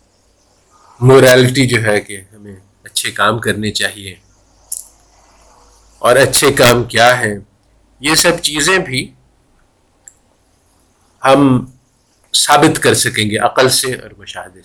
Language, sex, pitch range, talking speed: Urdu, male, 95-130 Hz, 110 wpm